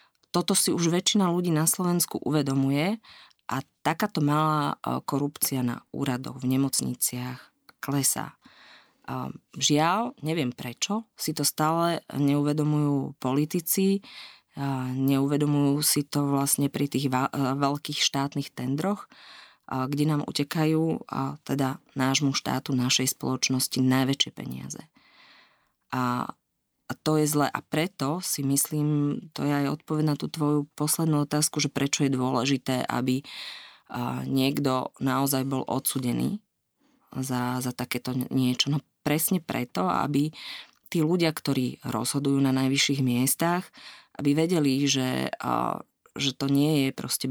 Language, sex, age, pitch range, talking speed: Slovak, female, 20-39, 130-155 Hz, 120 wpm